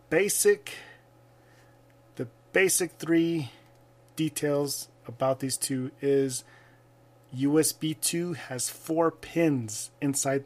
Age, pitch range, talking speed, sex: 30-49, 125-145 Hz, 85 wpm, male